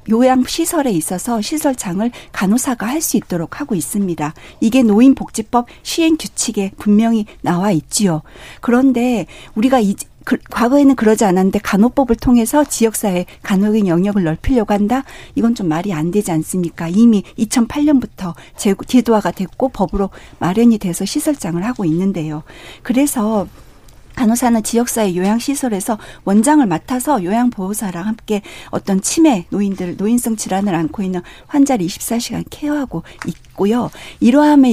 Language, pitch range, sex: Korean, 185-245 Hz, female